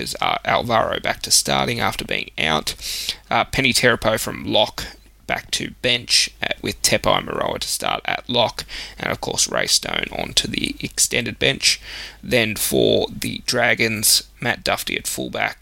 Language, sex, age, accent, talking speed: English, male, 20-39, Australian, 160 wpm